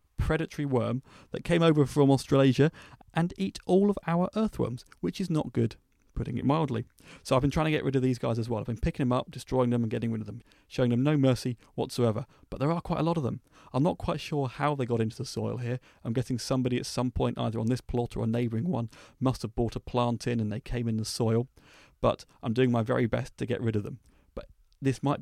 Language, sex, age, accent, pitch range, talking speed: English, male, 40-59, British, 115-145 Hz, 255 wpm